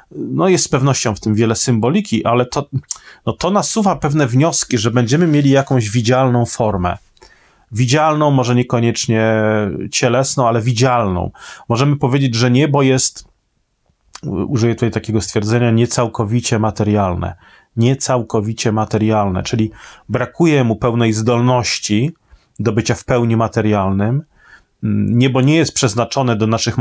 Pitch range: 110-135 Hz